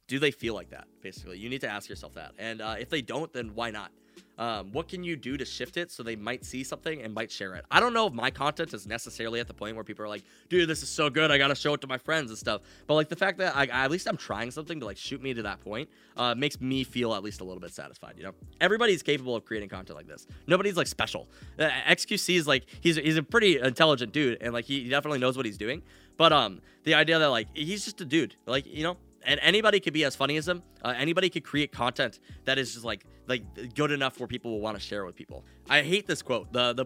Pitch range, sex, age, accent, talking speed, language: 115-160 Hz, male, 20-39, American, 280 wpm, English